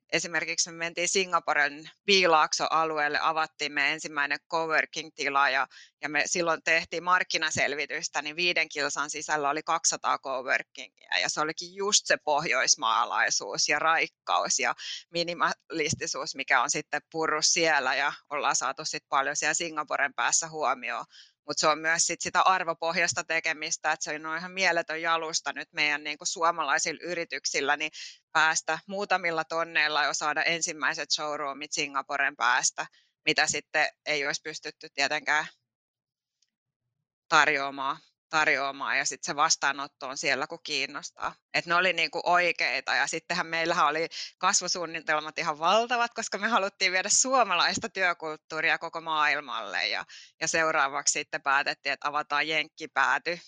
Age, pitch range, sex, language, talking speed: 20-39, 150-170 Hz, female, Finnish, 130 wpm